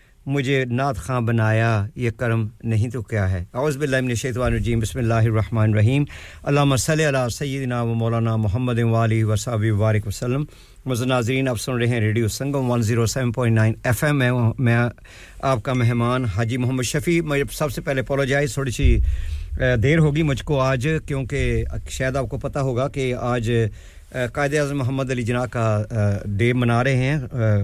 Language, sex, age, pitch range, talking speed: English, male, 50-69, 115-135 Hz, 150 wpm